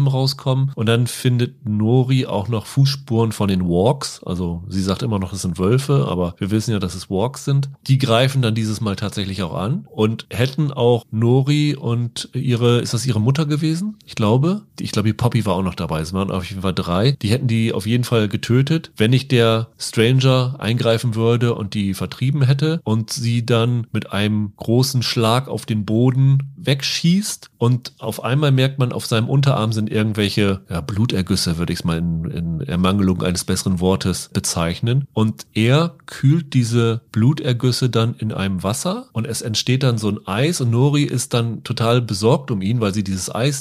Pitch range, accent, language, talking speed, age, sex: 105-130 Hz, German, German, 195 wpm, 30-49, male